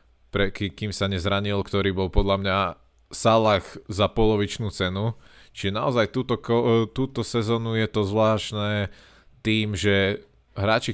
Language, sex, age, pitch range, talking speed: Slovak, male, 20-39, 90-105 Hz, 130 wpm